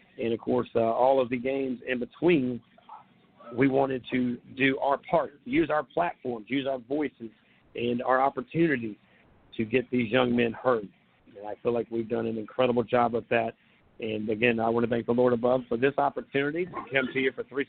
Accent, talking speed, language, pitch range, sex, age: American, 205 wpm, English, 120-150 Hz, male, 40-59